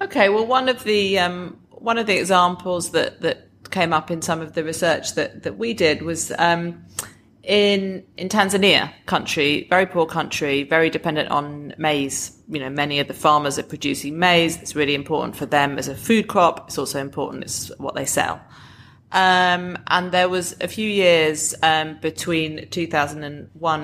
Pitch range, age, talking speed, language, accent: 145-180 Hz, 30-49, 180 wpm, English, British